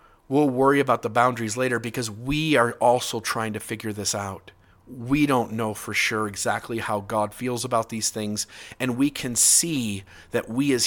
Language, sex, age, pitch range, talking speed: English, male, 40-59, 105-135 Hz, 190 wpm